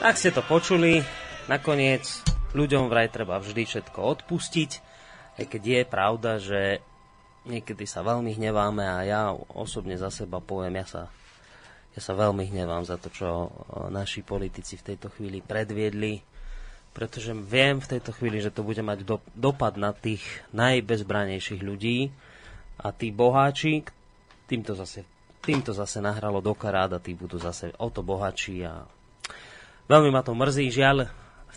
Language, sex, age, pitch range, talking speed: Slovak, male, 30-49, 95-120 Hz, 150 wpm